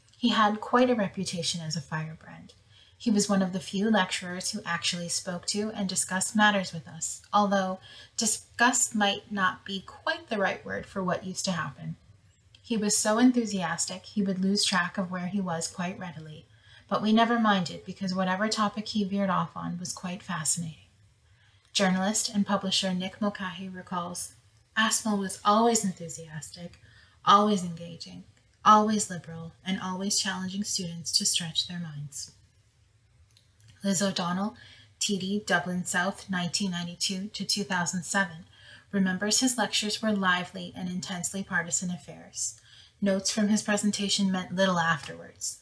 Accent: American